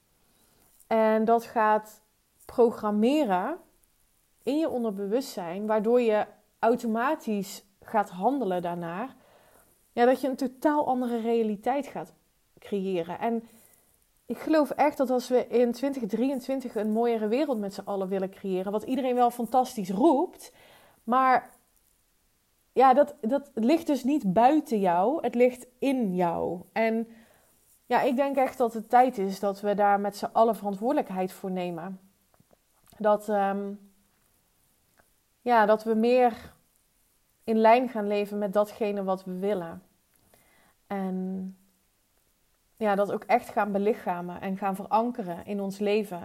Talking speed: 125 wpm